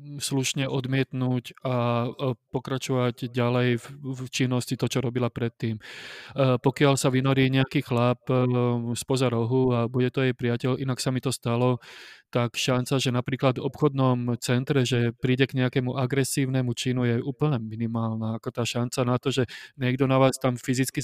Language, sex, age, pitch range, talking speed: Slovak, male, 20-39, 125-140 Hz, 155 wpm